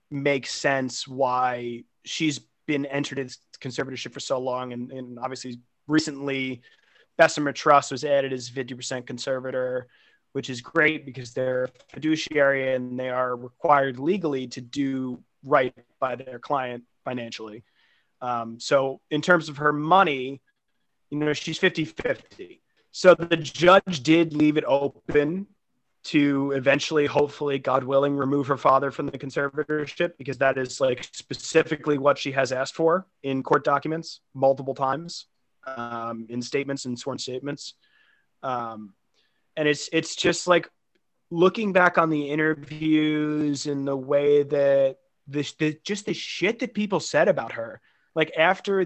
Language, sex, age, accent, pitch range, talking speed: English, male, 30-49, American, 130-155 Hz, 145 wpm